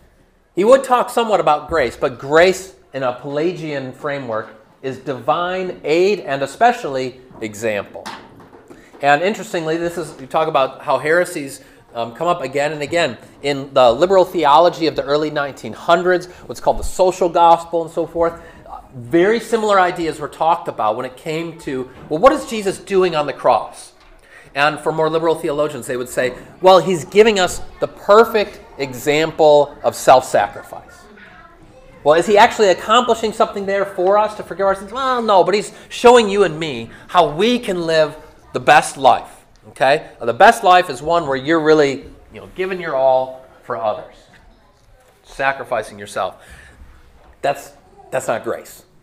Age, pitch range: 30-49, 130-185 Hz